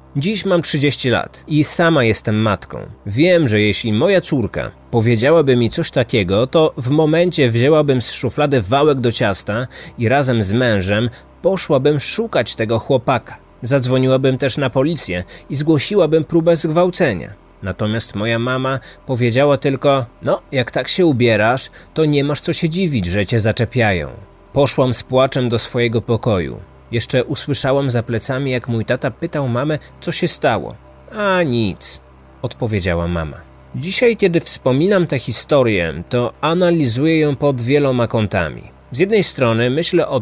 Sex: male